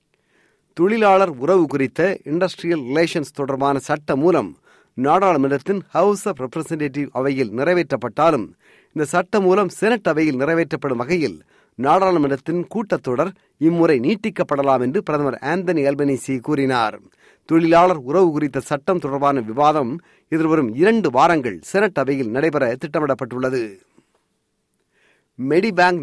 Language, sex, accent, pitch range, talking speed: Tamil, male, native, 140-185 Hz, 100 wpm